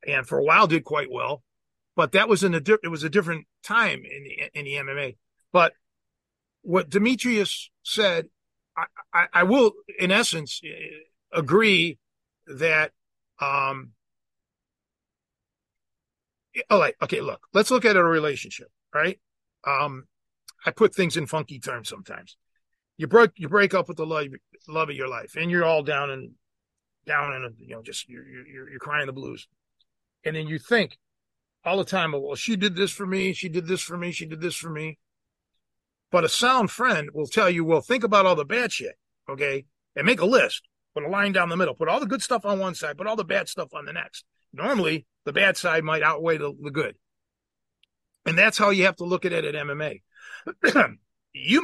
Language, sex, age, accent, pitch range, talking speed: English, male, 40-59, American, 145-200 Hz, 195 wpm